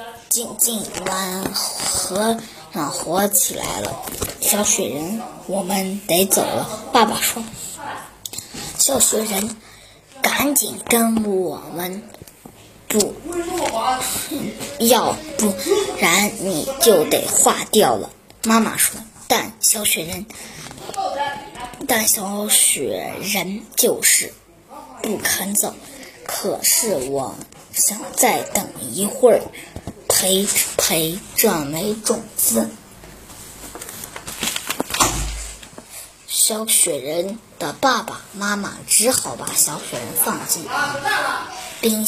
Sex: male